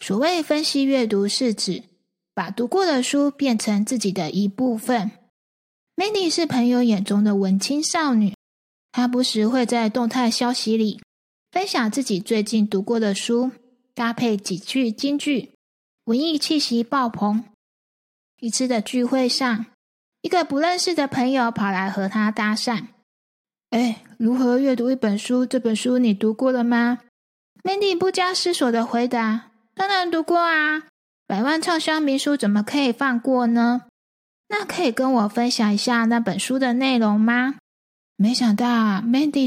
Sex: female